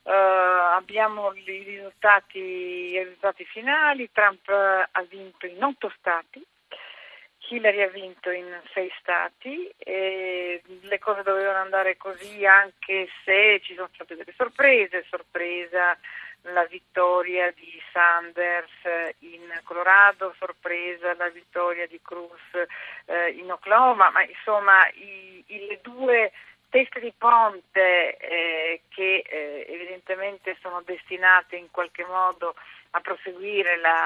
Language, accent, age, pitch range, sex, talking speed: Italian, native, 50-69, 175-200 Hz, female, 120 wpm